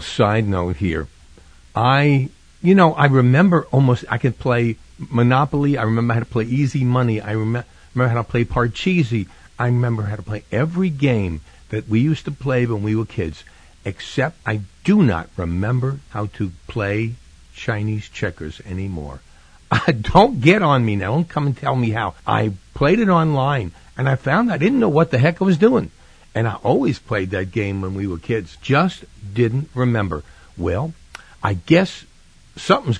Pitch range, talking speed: 95-135 Hz, 180 wpm